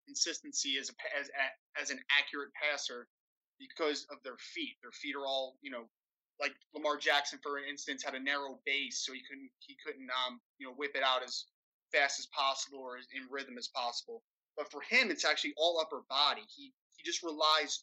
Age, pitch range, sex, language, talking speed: 20-39, 140-175 Hz, male, English, 200 wpm